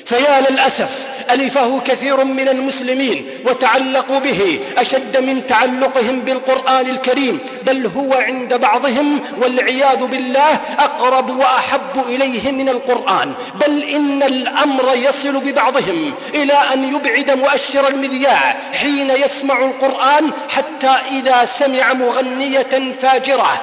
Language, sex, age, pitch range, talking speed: English, male, 40-59, 250-270 Hz, 105 wpm